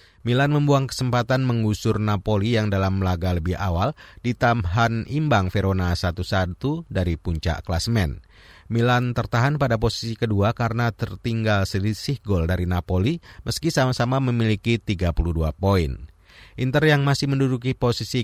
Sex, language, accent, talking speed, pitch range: male, Indonesian, native, 125 wpm, 90-125 Hz